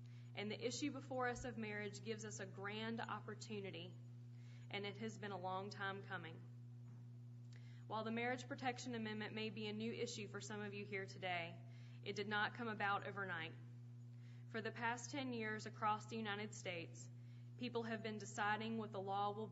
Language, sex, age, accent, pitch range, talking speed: English, female, 20-39, American, 110-130 Hz, 180 wpm